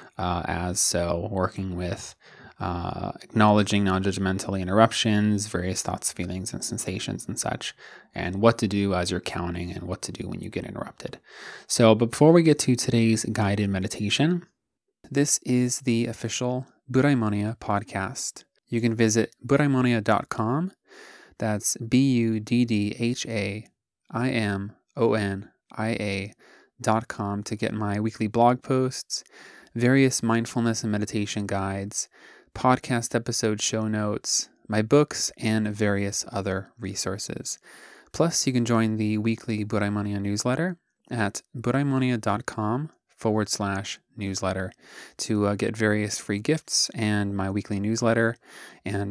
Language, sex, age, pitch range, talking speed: English, male, 20-39, 100-120 Hz, 115 wpm